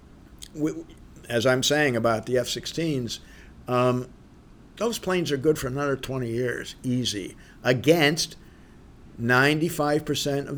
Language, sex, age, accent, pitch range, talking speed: English, male, 50-69, American, 125-165 Hz, 100 wpm